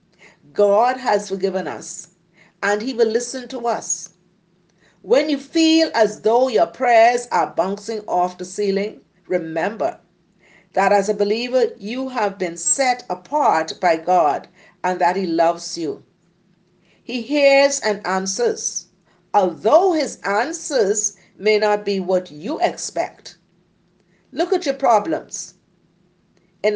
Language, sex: English, female